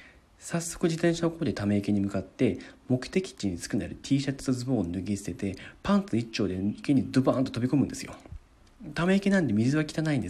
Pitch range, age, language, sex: 105-170 Hz, 40-59, Japanese, male